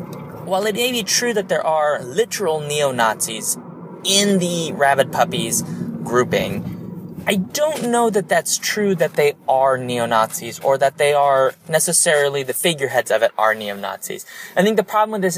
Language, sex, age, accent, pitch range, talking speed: English, male, 30-49, American, 130-190 Hz, 165 wpm